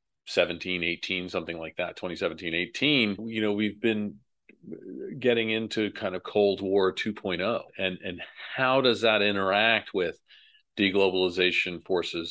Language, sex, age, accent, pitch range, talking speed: English, male, 40-59, American, 100-125 Hz, 130 wpm